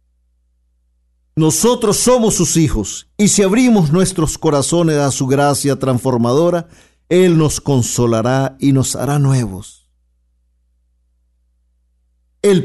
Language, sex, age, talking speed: Spanish, male, 50-69, 100 wpm